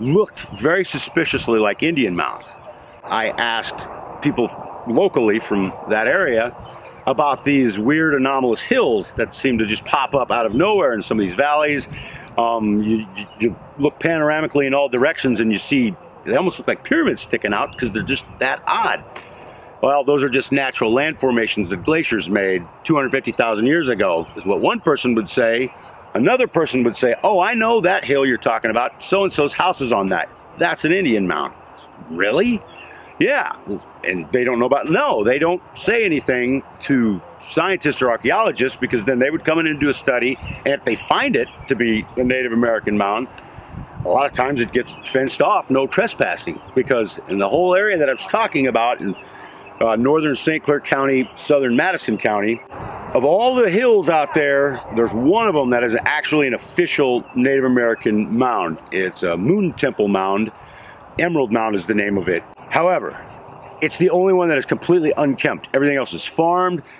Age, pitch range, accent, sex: 50-69, 115-160 Hz, American, male